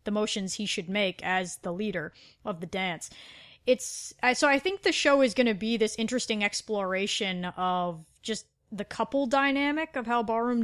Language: English